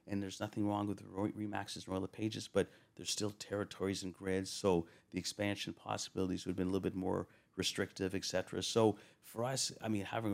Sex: male